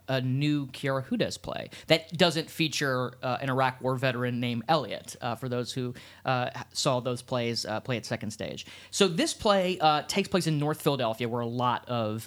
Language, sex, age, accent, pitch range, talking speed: English, male, 30-49, American, 115-140 Hz, 200 wpm